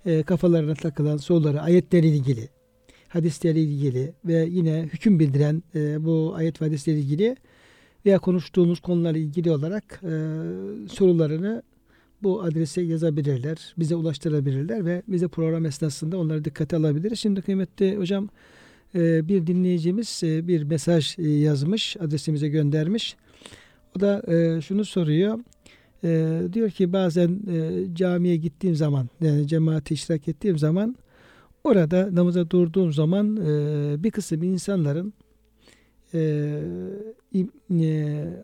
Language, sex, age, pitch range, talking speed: Turkish, male, 60-79, 155-185 Hz, 110 wpm